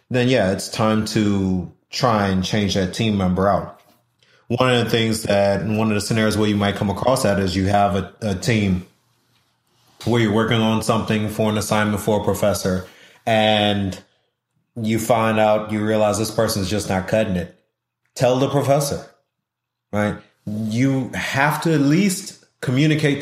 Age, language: 30-49, English